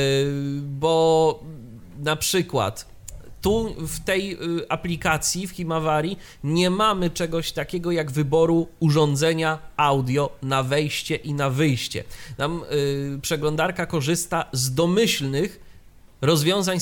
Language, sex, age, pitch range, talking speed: Polish, male, 30-49, 135-180 Hz, 105 wpm